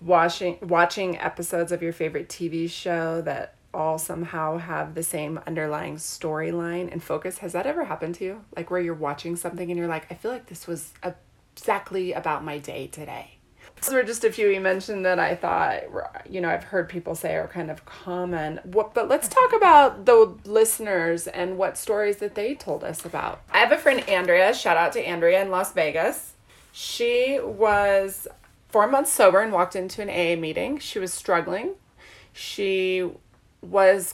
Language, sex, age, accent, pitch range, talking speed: English, female, 30-49, American, 170-210 Hz, 185 wpm